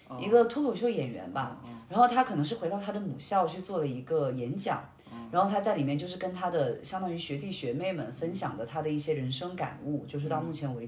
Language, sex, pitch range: Chinese, female, 140-220 Hz